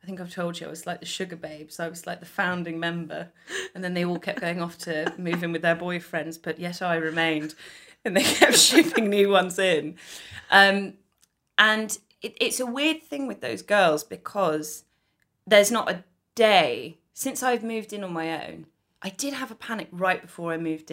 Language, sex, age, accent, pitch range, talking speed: English, female, 20-39, British, 160-200 Hz, 205 wpm